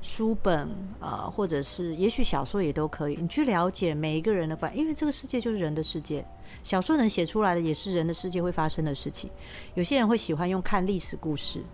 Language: Chinese